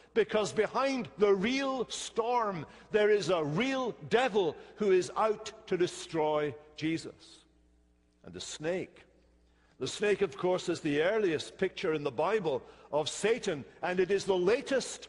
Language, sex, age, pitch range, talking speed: English, male, 60-79, 150-210 Hz, 145 wpm